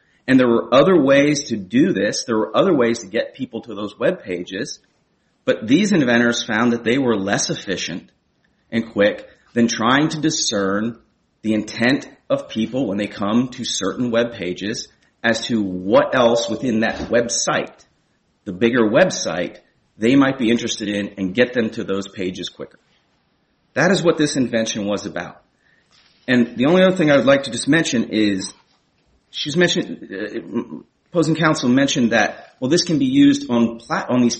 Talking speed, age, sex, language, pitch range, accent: 180 wpm, 30-49, male, English, 110-150 Hz, American